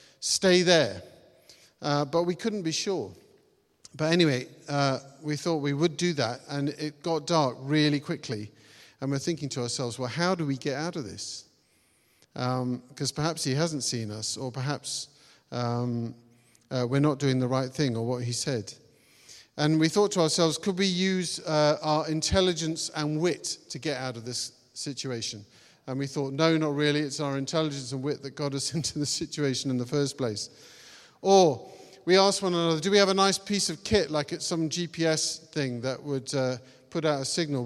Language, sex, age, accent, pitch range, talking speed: English, male, 50-69, British, 125-165 Hz, 195 wpm